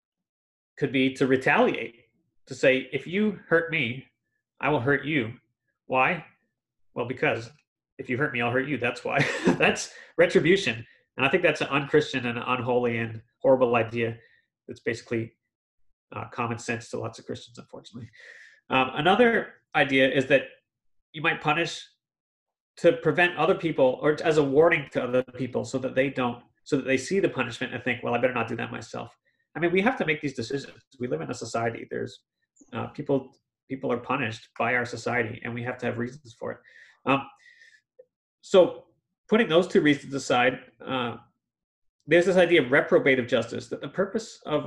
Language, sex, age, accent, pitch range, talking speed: English, male, 30-49, American, 120-155 Hz, 185 wpm